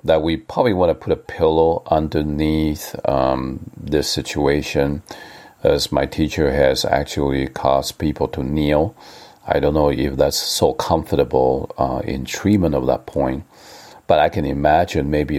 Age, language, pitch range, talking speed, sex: 50-69, English, 70-85 Hz, 150 wpm, male